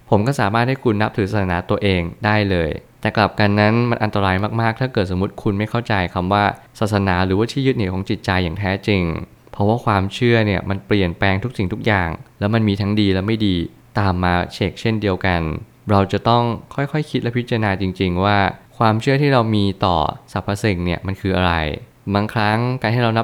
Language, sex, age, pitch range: Thai, male, 20-39, 95-115 Hz